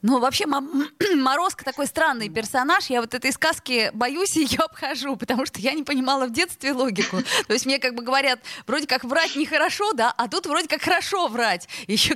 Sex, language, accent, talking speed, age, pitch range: female, Russian, native, 195 wpm, 20-39, 215-275 Hz